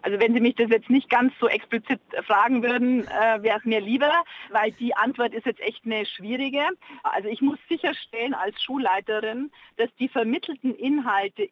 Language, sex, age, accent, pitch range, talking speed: German, female, 40-59, German, 205-255 Hz, 175 wpm